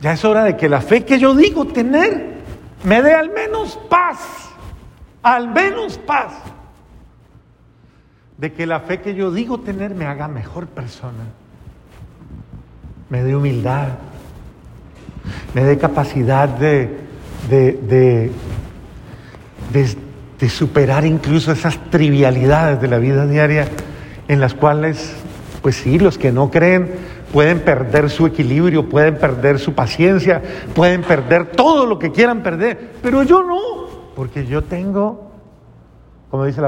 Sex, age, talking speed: male, 50-69, 135 wpm